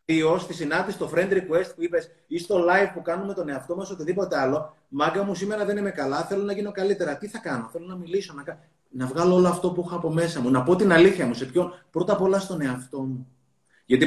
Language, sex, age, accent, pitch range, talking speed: Greek, male, 30-49, native, 155-185 Hz, 245 wpm